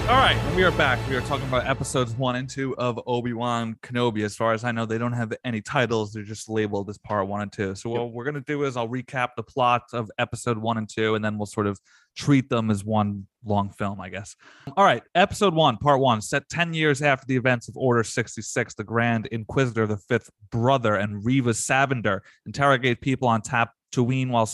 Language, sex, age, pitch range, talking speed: English, male, 20-39, 110-130 Hz, 225 wpm